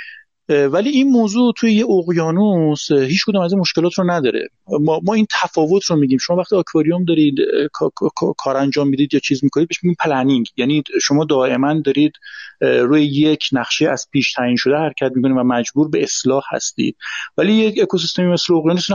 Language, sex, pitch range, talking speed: Persian, male, 140-195 Hz, 175 wpm